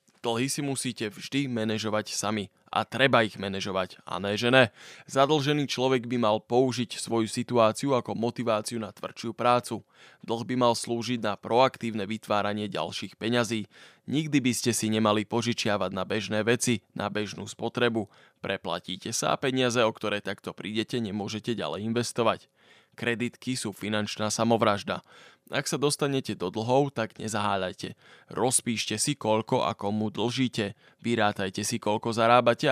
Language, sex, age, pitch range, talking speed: Slovak, male, 20-39, 105-120 Hz, 145 wpm